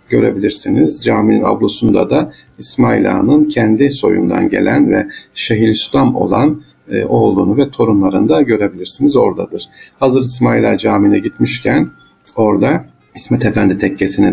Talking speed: 115 wpm